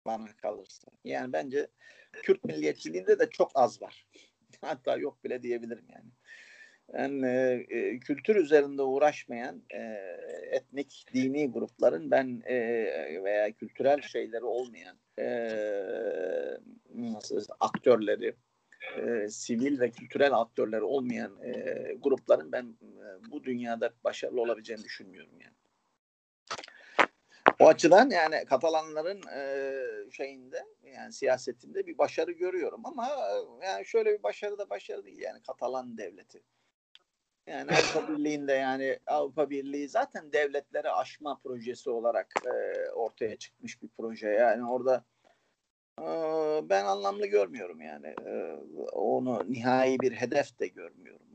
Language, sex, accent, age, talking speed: Turkish, male, native, 50-69, 110 wpm